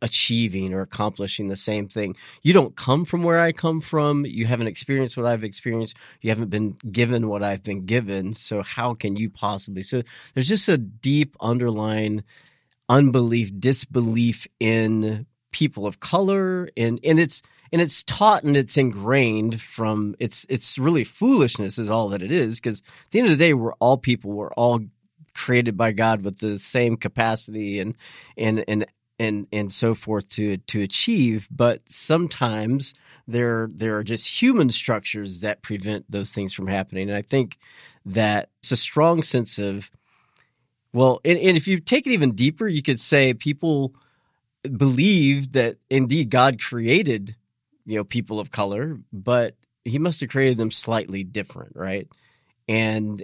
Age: 40-59